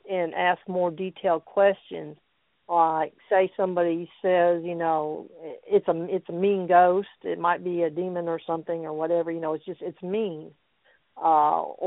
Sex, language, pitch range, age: female, English, 170-200 Hz, 50-69